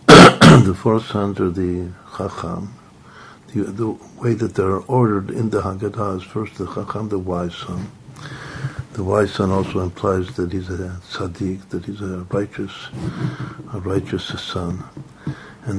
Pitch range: 95-115 Hz